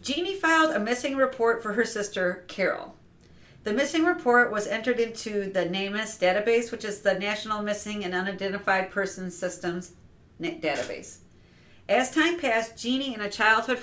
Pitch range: 200-260 Hz